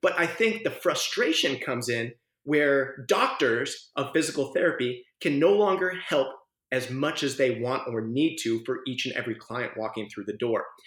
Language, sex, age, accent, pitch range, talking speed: English, male, 30-49, American, 130-205 Hz, 180 wpm